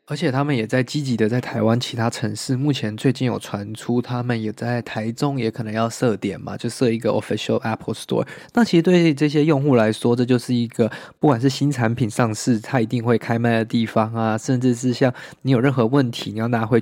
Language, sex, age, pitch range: Chinese, male, 20-39, 115-140 Hz